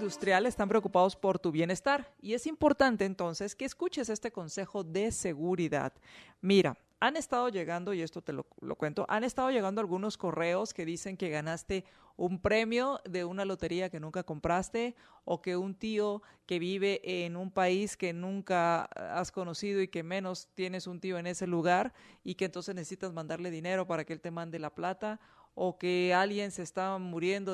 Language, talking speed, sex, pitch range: Spanish, 185 wpm, female, 170-205 Hz